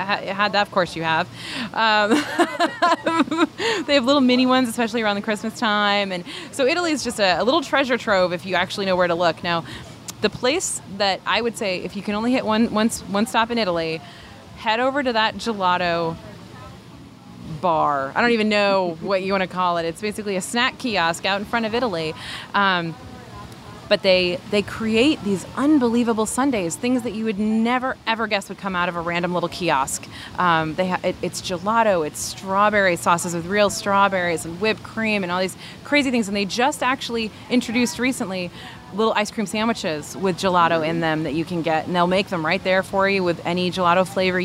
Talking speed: 205 wpm